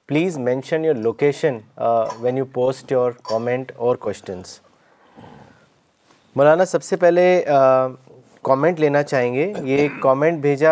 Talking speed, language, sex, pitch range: 125 wpm, Urdu, male, 140-175 Hz